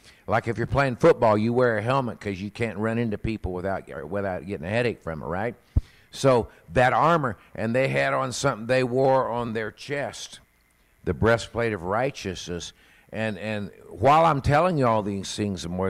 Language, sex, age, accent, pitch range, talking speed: English, male, 50-69, American, 95-120 Hz, 190 wpm